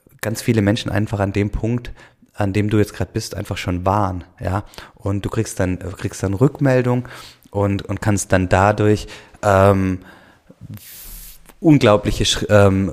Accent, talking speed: German, 150 wpm